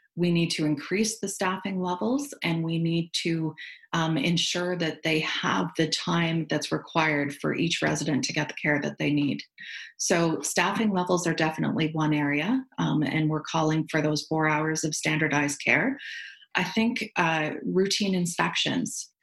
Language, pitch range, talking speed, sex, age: English, 155-180 Hz, 165 wpm, female, 30-49